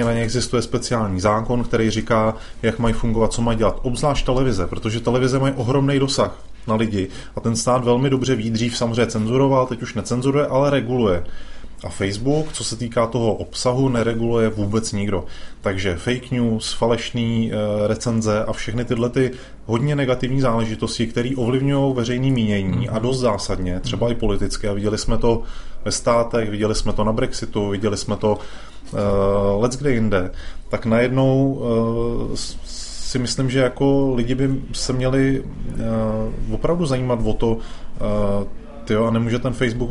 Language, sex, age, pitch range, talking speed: Czech, male, 20-39, 110-125 Hz, 160 wpm